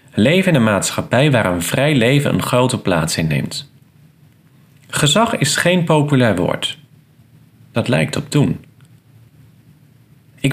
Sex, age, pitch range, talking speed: male, 40-59, 130-150 Hz, 130 wpm